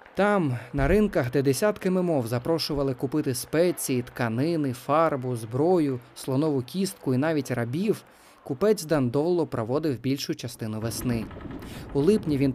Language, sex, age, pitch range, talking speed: Ukrainian, male, 20-39, 120-160 Hz, 125 wpm